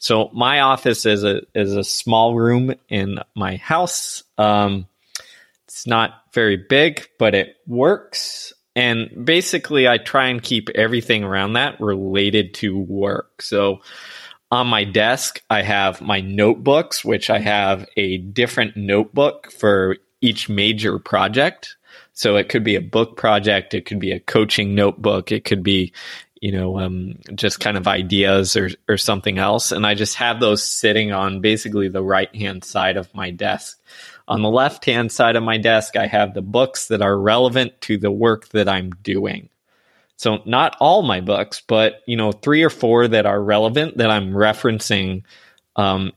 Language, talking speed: English, 165 wpm